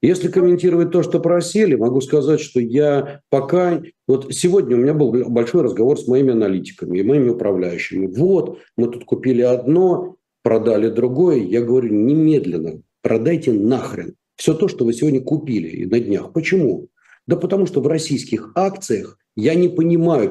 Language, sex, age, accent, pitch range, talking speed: Russian, male, 50-69, native, 125-175 Hz, 160 wpm